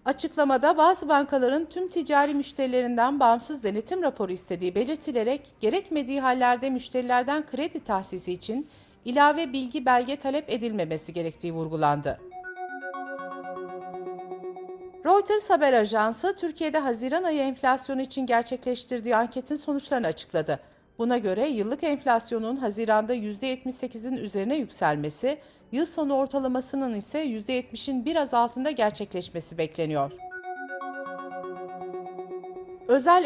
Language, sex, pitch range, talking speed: Turkish, female, 215-290 Hz, 95 wpm